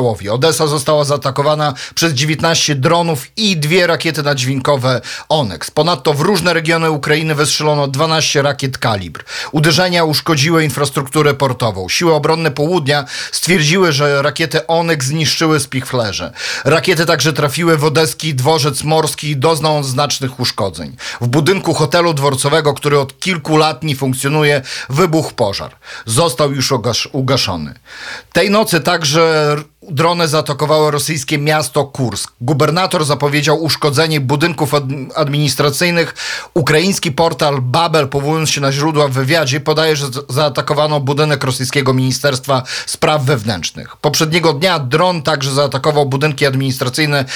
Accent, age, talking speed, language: native, 40-59, 120 wpm, Polish